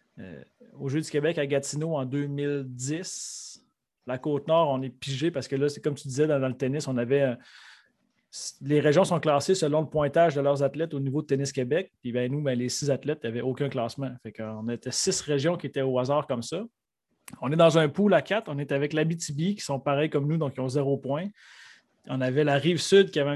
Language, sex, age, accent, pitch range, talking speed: French, male, 30-49, Canadian, 135-160 Hz, 235 wpm